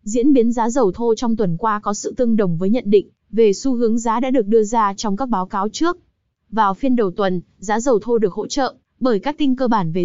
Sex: female